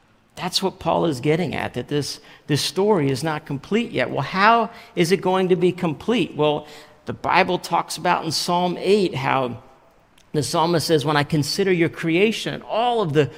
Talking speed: 195 wpm